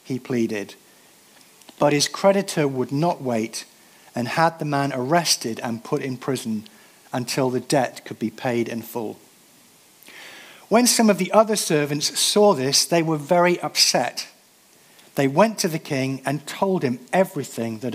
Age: 50-69